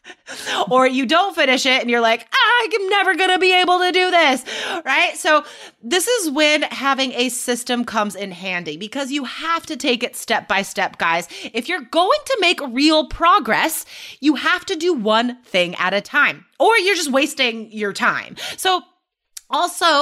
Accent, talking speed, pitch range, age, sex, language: American, 185 wpm, 230-335 Hz, 30-49, female, English